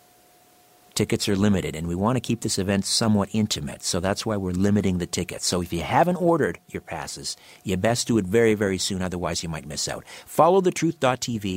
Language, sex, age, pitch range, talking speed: English, male, 50-69, 90-115 Hz, 205 wpm